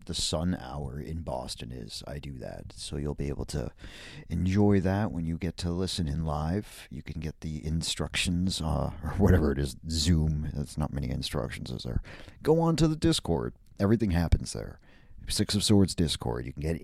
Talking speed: 195 wpm